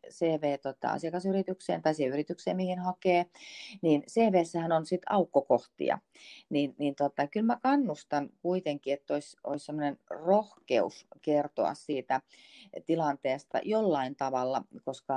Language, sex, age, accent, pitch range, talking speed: Finnish, female, 40-59, native, 135-180 Hz, 120 wpm